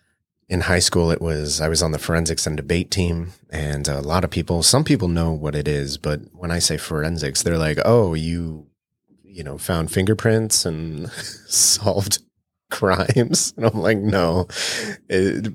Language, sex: English, male